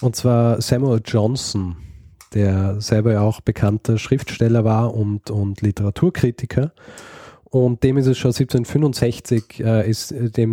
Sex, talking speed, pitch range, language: male, 130 wpm, 110-125 Hz, German